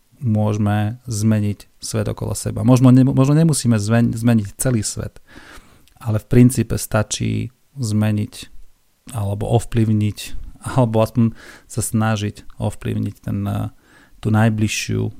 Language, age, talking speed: Slovak, 40-59, 110 wpm